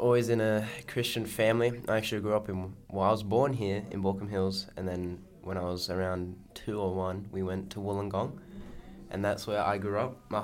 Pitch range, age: 95-110 Hz, 10-29